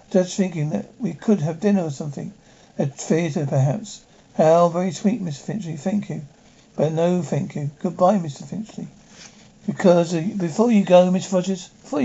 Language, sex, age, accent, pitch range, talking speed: English, male, 50-69, British, 165-200 Hz, 165 wpm